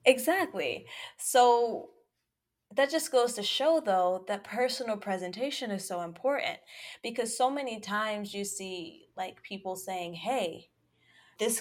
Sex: female